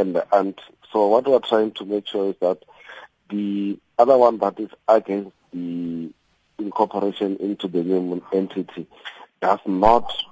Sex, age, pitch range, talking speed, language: male, 40-59, 90-105 Hz, 150 wpm, English